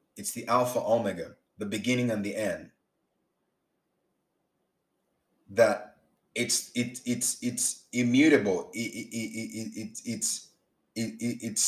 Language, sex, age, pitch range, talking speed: English, male, 30-49, 105-125 Hz, 65 wpm